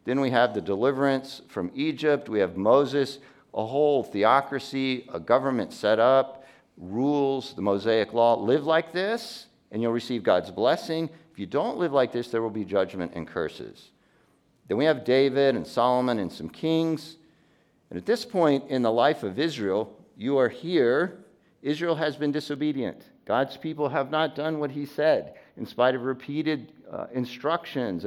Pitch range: 120-145 Hz